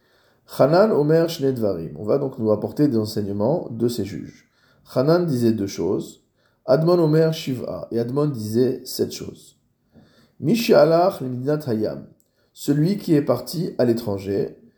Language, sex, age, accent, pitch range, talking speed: French, male, 20-39, French, 110-150 Hz, 140 wpm